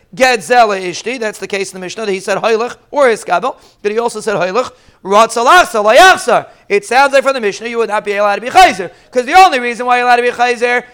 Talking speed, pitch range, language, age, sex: 245 wpm, 215-260 Hz, English, 30-49, male